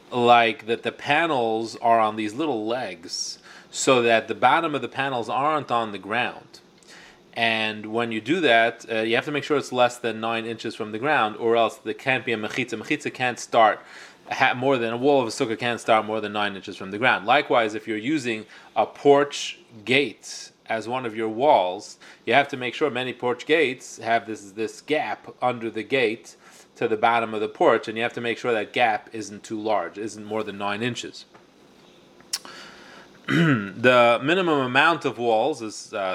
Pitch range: 110-130 Hz